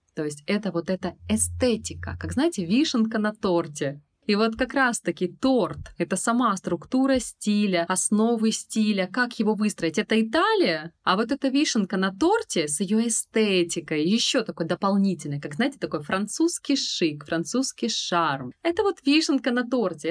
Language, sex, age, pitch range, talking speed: Russian, female, 20-39, 170-245 Hz, 150 wpm